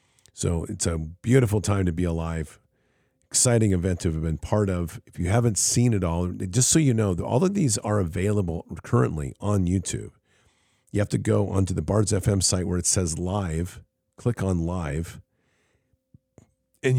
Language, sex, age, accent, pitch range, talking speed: English, male, 50-69, American, 85-105 Hz, 175 wpm